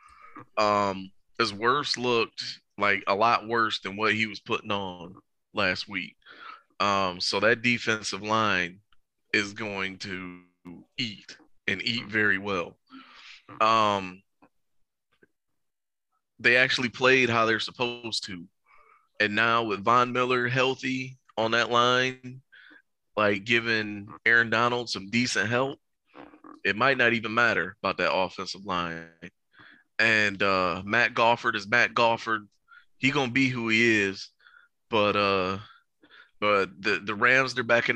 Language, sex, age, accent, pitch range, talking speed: English, male, 20-39, American, 105-130 Hz, 135 wpm